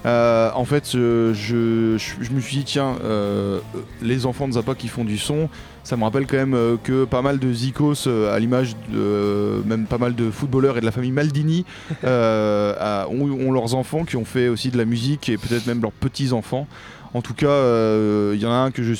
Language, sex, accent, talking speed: French, male, French, 225 wpm